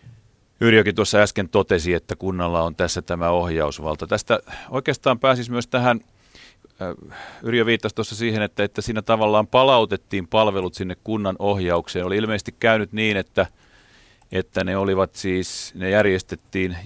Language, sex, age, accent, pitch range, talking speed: Finnish, male, 30-49, native, 90-110 Hz, 140 wpm